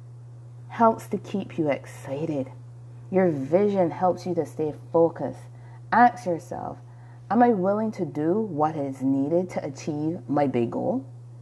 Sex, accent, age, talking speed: female, American, 30-49, 140 wpm